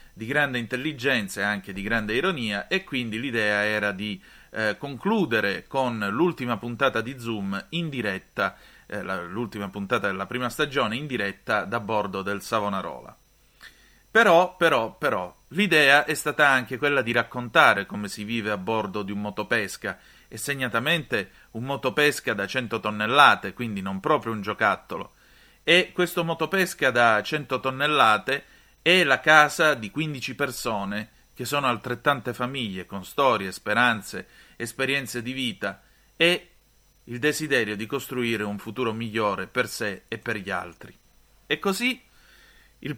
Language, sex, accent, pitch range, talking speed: Italian, male, native, 105-145 Hz, 145 wpm